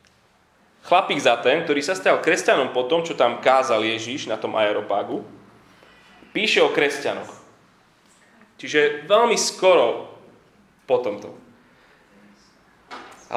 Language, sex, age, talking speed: Slovak, male, 20-39, 110 wpm